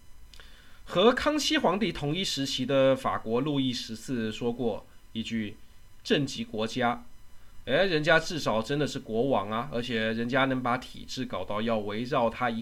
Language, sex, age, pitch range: Chinese, male, 20-39, 115-145 Hz